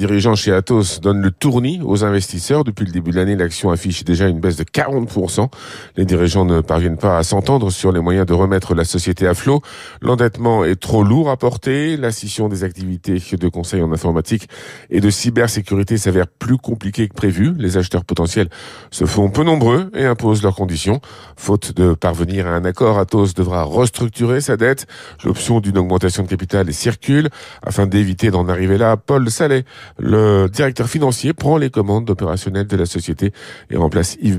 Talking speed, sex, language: 185 wpm, male, French